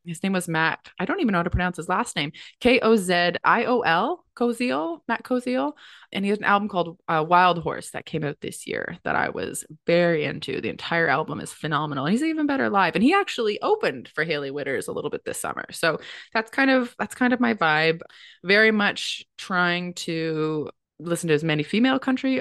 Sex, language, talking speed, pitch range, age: female, English, 210 wpm, 155-230 Hz, 20-39